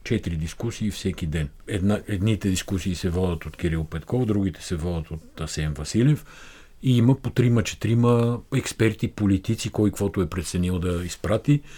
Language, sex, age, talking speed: Bulgarian, male, 50-69, 160 wpm